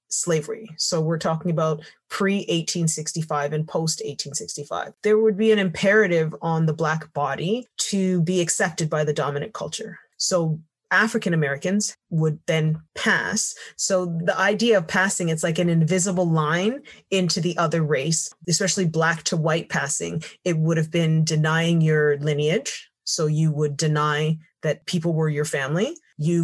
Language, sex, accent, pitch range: English, female, American, 155-185 Hz